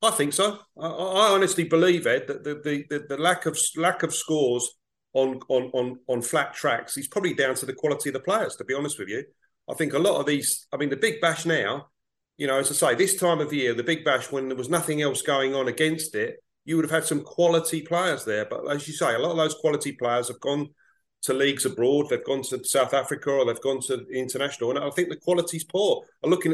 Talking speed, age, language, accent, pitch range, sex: 250 wpm, 40-59, English, British, 135-170 Hz, male